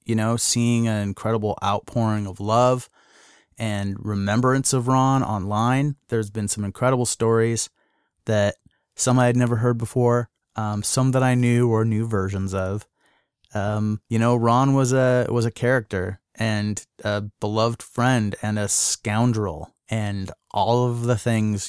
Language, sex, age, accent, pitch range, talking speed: English, male, 30-49, American, 100-120 Hz, 150 wpm